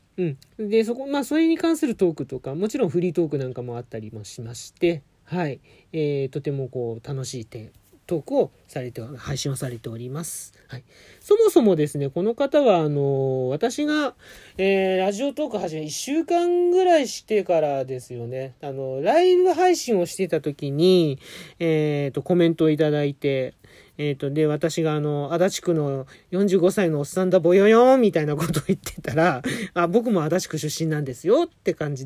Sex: male